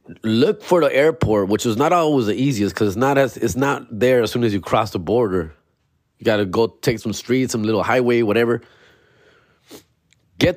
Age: 30-49